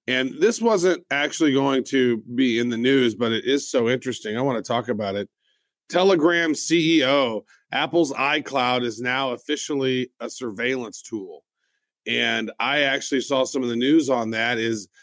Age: 40-59